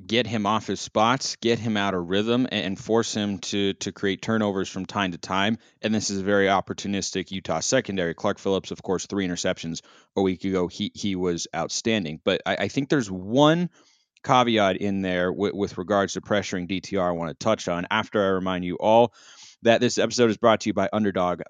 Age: 30-49